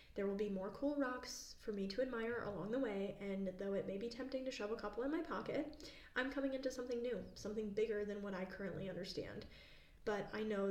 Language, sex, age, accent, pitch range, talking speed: English, female, 10-29, American, 185-215 Hz, 230 wpm